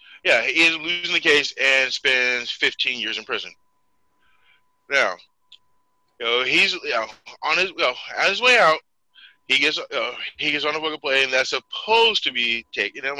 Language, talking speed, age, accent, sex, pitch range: English, 195 wpm, 20-39, American, male, 120-170 Hz